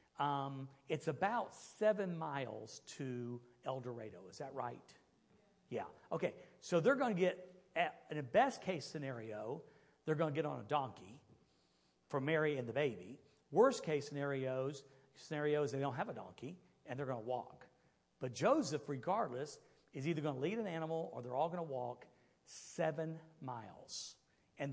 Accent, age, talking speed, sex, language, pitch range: American, 50-69, 165 wpm, male, English, 130-165 Hz